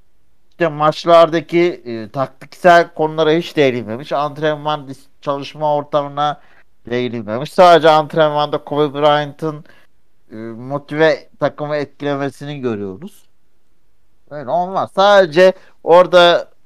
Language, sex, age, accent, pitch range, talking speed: Turkish, male, 60-79, native, 135-180 Hz, 85 wpm